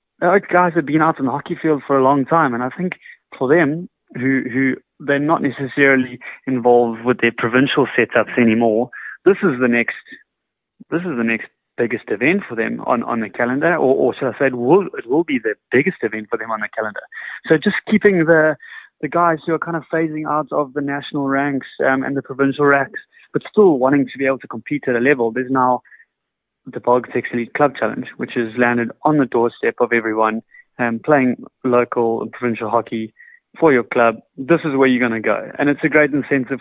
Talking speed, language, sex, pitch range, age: 220 wpm, English, male, 125-150 Hz, 30-49